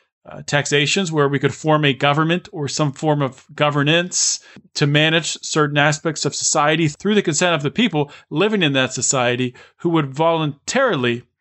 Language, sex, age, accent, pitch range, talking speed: English, male, 40-59, American, 130-155 Hz, 170 wpm